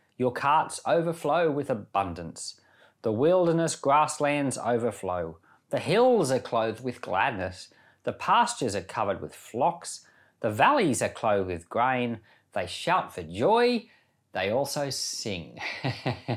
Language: English